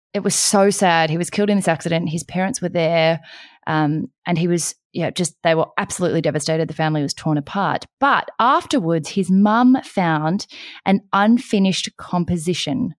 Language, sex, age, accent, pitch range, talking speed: English, female, 20-39, Australian, 160-205 Hz, 175 wpm